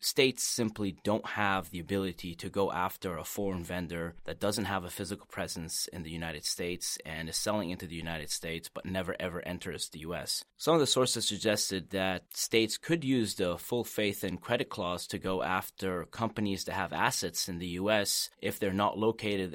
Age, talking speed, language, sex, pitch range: 30-49, 195 wpm, English, male, 90-100 Hz